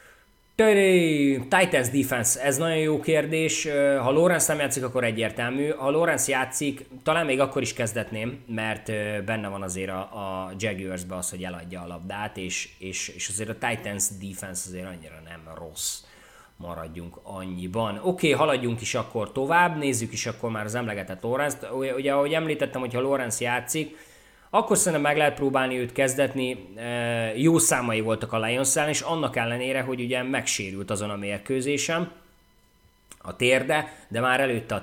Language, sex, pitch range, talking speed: Hungarian, male, 105-140 Hz, 160 wpm